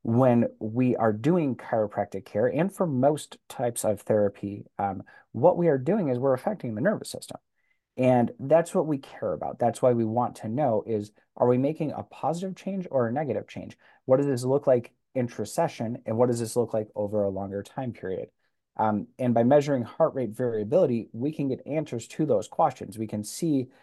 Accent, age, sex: American, 30-49, male